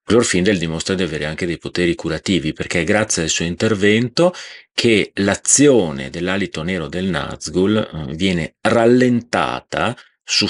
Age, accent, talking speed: 40-59, native, 130 wpm